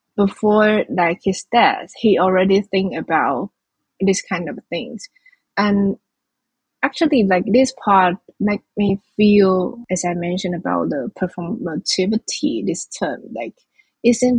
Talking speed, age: 125 wpm, 20-39